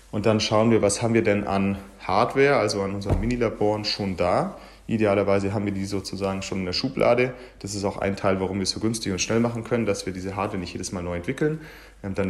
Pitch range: 100-115 Hz